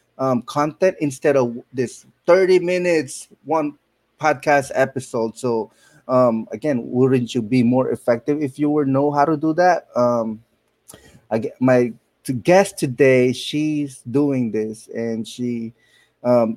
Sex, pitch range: male, 120-145 Hz